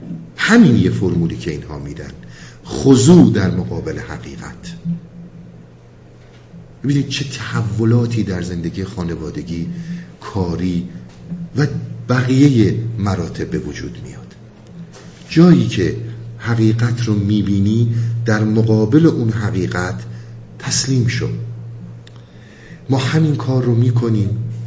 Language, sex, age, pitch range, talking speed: Persian, male, 50-69, 95-125 Hz, 95 wpm